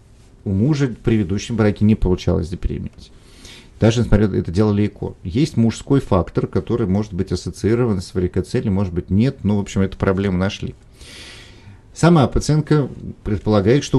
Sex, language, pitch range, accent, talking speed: male, Russian, 95-120 Hz, native, 150 wpm